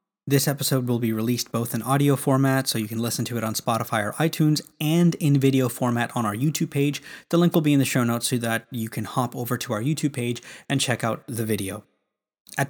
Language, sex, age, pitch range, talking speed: English, male, 20-39, 115-135 Hz, 240 wpm